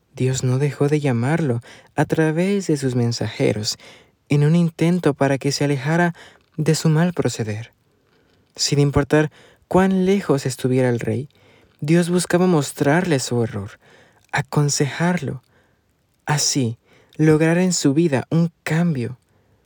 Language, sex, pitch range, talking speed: Spanish, male, 120-160 Hz, 125 wpm